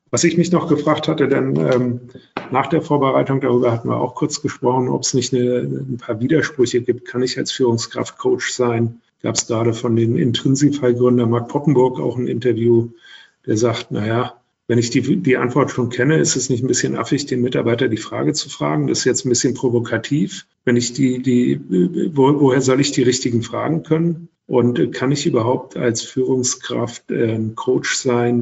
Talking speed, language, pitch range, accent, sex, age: 190 wpm, German, 115-135 Hz, German, male, 50-69